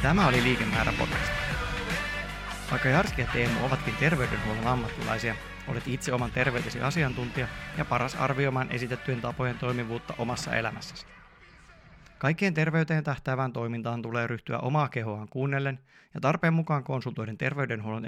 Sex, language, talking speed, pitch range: male, Finnish, 125 wpm, 120-150 Hz